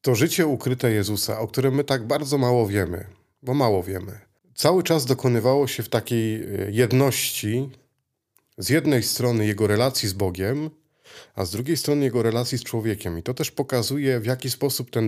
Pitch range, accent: 105-130 Hz, native